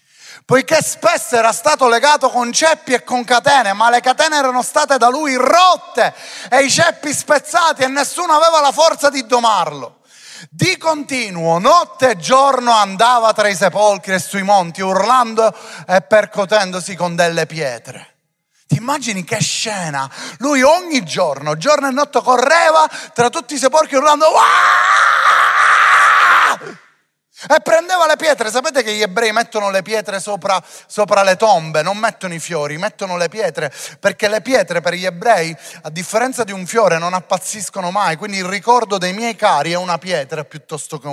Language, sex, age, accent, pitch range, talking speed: Italian, male, 30-49, native, 185-270 Hz, 160 wpm